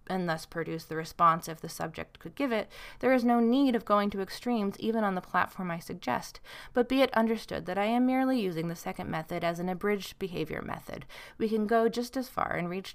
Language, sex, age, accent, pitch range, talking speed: English, female, 30-49, American, 175-230 Hz, 230 wpm